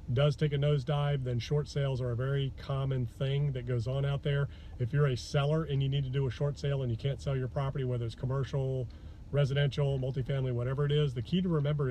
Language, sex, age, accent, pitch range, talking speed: English, male, 40-59, American, 125-145 Hz, 235 wpm